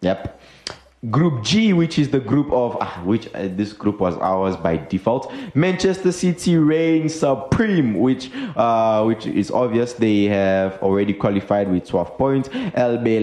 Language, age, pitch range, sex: English, 20-39, 105-150 Hz, male